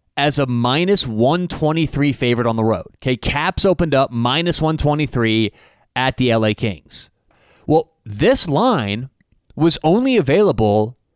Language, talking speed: English, 130 wpm